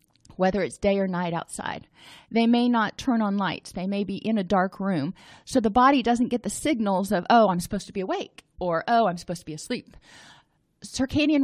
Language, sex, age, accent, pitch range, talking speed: English, female, 30-49, American, 185-245 Hz, 215 wpm